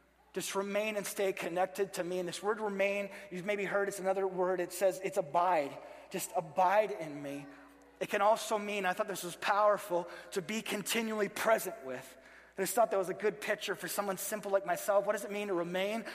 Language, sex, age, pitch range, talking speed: English, male, 30-49, 170-205 Hz, 215 wpm